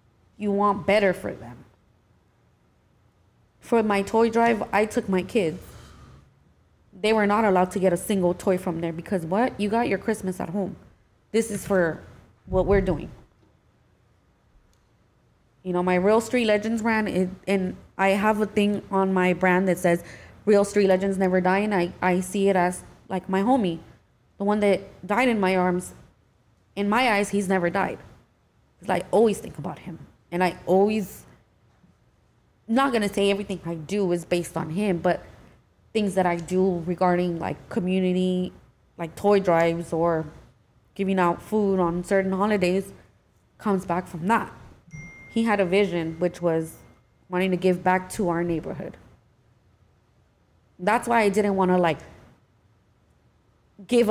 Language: English